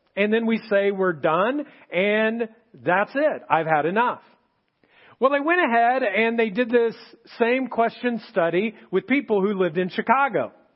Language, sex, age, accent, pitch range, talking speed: English, male, 40-59, American, 215-280 Hz, 160 wpm